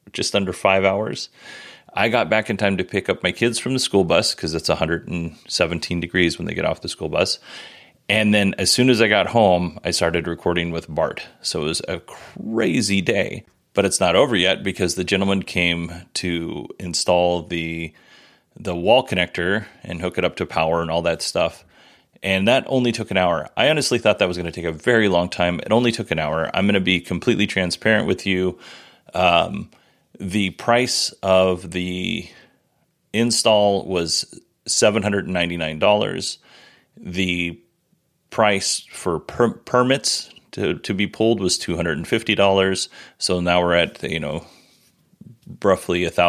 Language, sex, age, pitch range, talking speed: English, male, 30-49, 85-100 Hz, 170 wpm